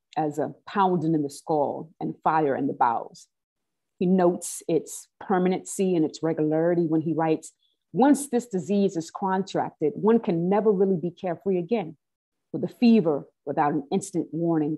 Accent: American